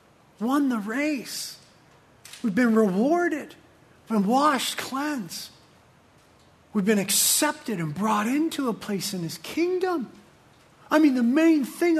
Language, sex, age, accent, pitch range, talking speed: English, male, 40-59, American, 155-230 Hz, 130 wpm